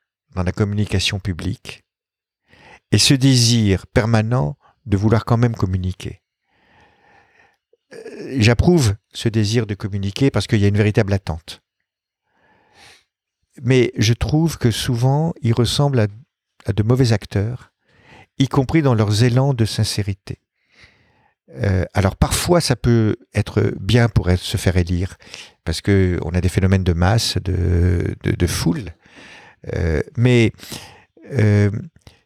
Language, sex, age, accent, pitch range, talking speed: French, male, 50-69, French, 100-130 Hz, 130 wpm